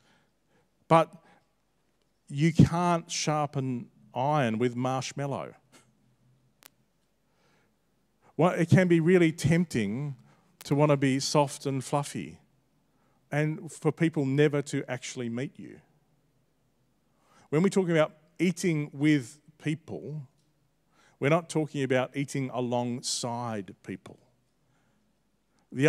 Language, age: English, 40-59